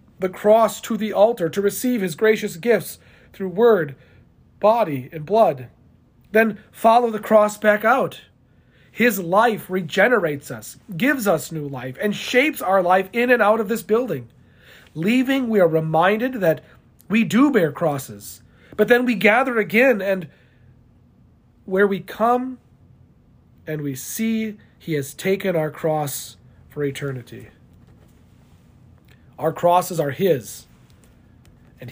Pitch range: 145-210 Hz